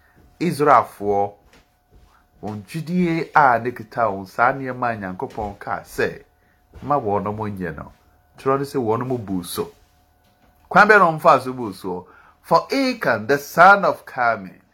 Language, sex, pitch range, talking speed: English, male, 105-175 Hz, 130 wpm